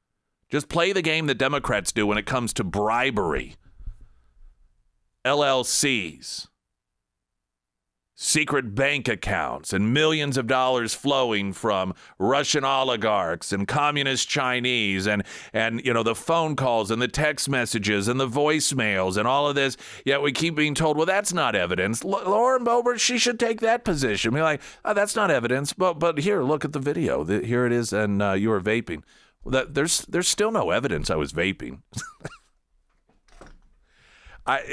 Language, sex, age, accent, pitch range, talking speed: English, male, 40-59, American, 100-150 Hz, 165 wpm